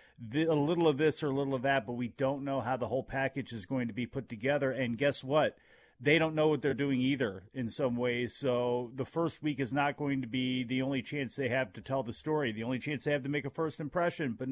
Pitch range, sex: 130-155 Hz, male